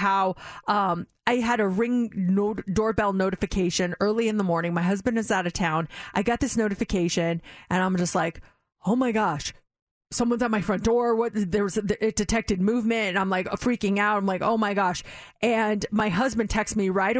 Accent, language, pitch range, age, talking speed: American, English, 205-290 Hz, 30-49, 200 wpm